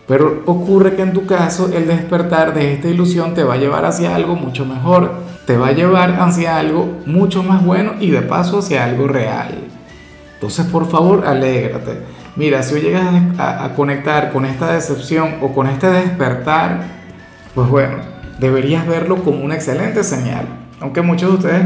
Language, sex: Spanish, male